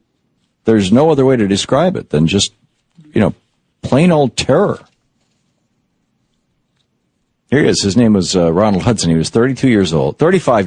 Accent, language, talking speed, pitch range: American, English, 165 wpm, 80-130 Hz